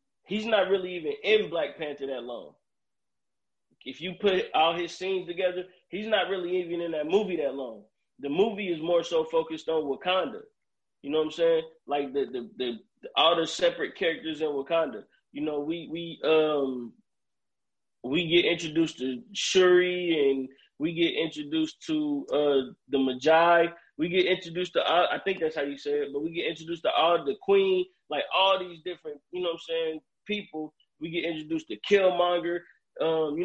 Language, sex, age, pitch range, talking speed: English, male, 20-39, 150-185 Hz, 185 wpm